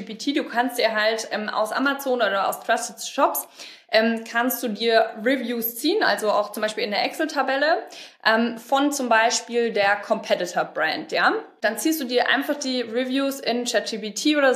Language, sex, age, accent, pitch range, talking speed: German, female, 20-39, German, 215-265 Hz, 170 wpm